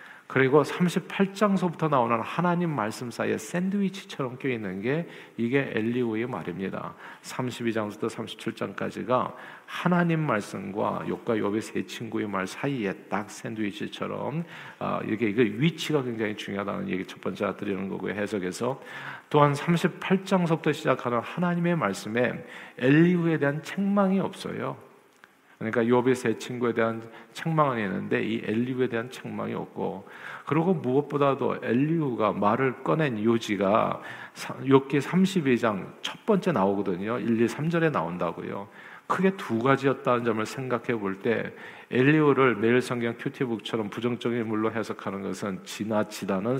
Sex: male